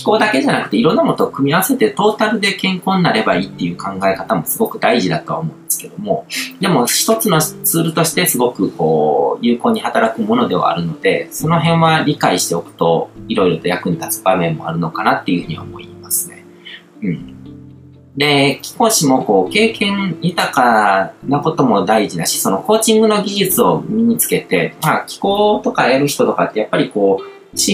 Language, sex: Japanese, male